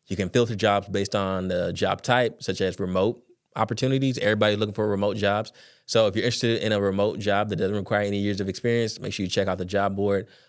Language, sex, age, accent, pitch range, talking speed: English, male, 20-39, American, 95-105 Hz, 235 wpm